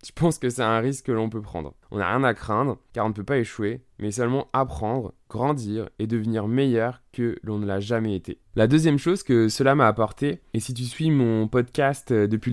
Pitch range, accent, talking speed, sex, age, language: 110-130 Hz, French, 230 wpm, male, 20-39, French